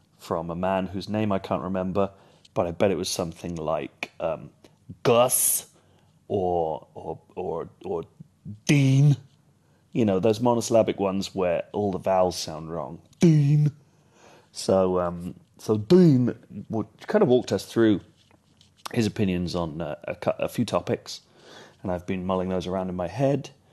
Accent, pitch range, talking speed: British, 95-120 Hz, 155 wpm